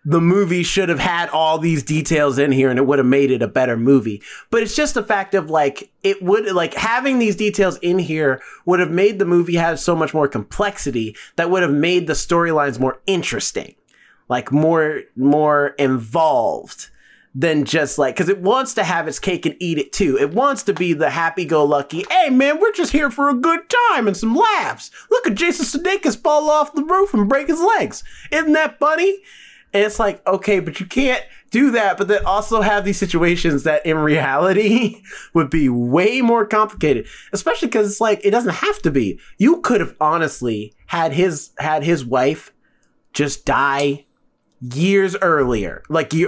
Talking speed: 195 wpm